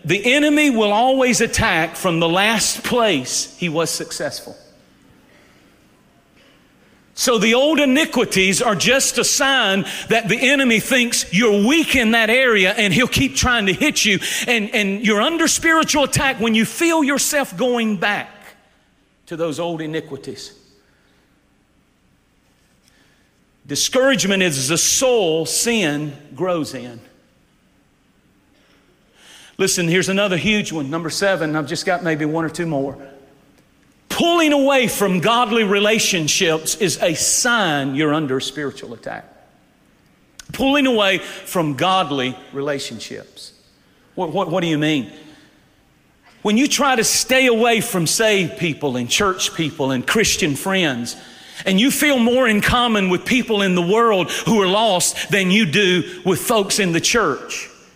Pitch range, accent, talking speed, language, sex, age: 165-240 Hz, American, 140 wpm, English, male, 40-59